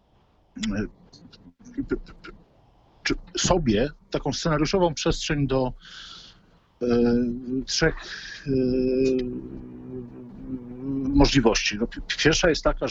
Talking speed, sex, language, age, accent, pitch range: 50 wpm, male, Polish, 50-69, native, 115-160 Hz